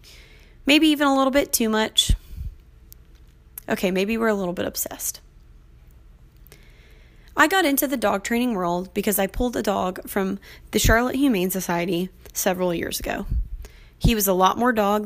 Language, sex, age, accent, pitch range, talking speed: English, female, 20-39, American, 175-225 Hz, 160 wpm